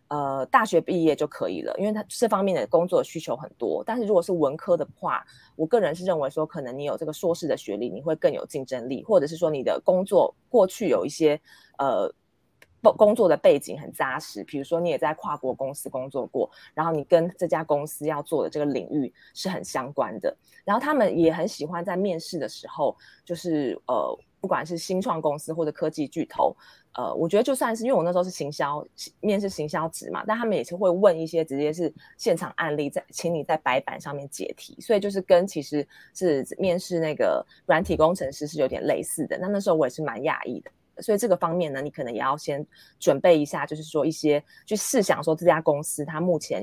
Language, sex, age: Chinese, female, 20-39